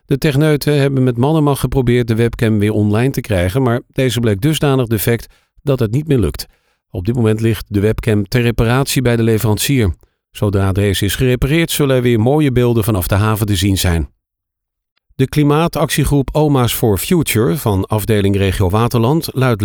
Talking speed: 180 wpm